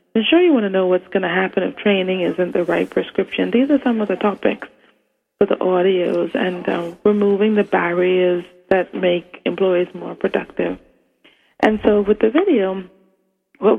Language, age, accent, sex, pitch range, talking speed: English, 30-49, American, female, 180-220 Hz, 180 wpm